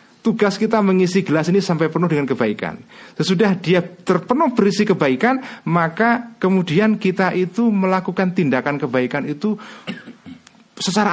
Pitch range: 145-210 Hz